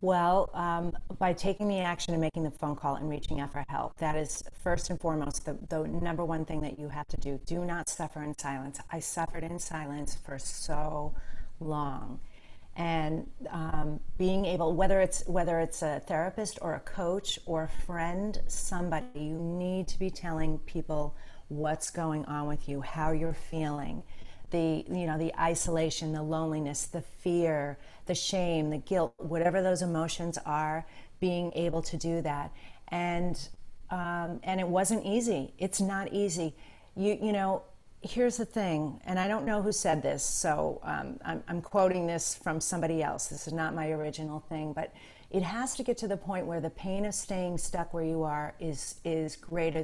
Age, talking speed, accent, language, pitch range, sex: 40-59, 185 wpm, American, English, 155-180 Hz, female